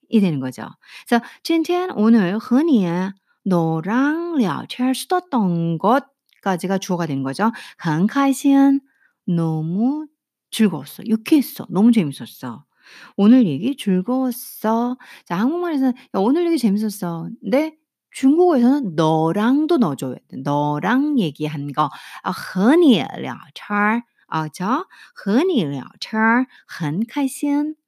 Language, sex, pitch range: Korean, female, 180-270 Hz